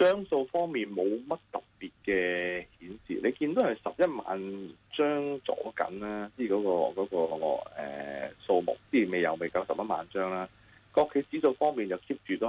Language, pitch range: Chinese, 95-125 Hz